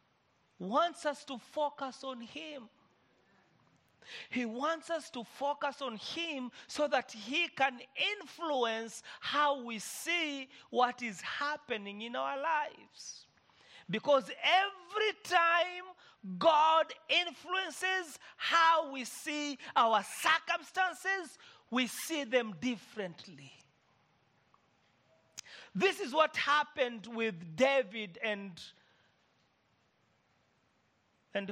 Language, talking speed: English, 95 wpm